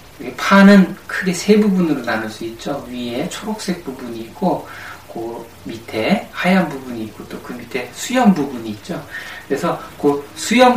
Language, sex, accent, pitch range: Korean, male, native, 110-175 Hz